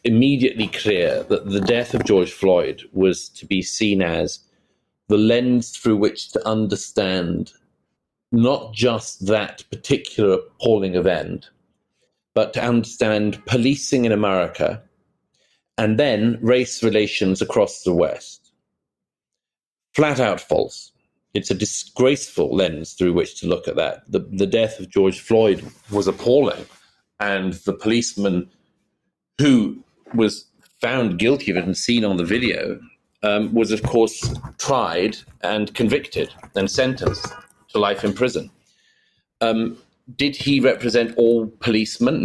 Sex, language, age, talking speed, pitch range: male, Swedish, 40-59, 130 wpm, 100-120 Hz